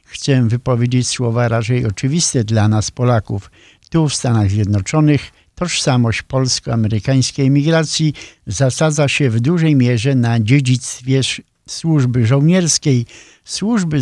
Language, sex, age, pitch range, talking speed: Polish, male, 50-69, 115-140 Hz, 105 wpm